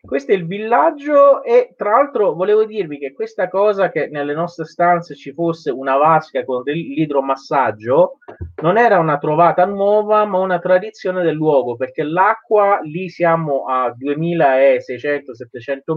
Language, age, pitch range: Italian, 30-49, 140-205 Hz